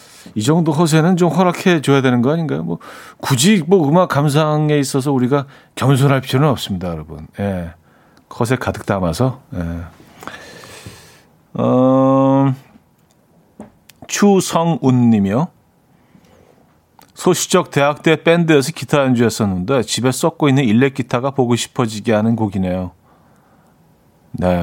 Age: 40-59